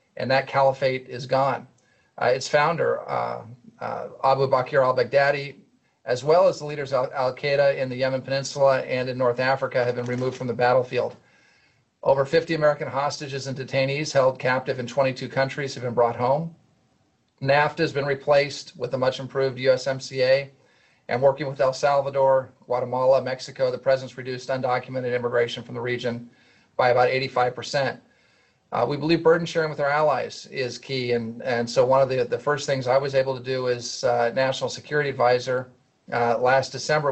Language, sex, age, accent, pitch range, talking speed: English, male, 40-59, American, 125-140 Hz, 175 wpm